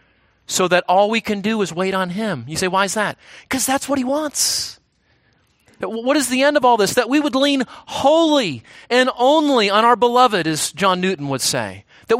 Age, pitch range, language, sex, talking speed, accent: 30-49, 180-235 Hz, English, male, 210 wpm, American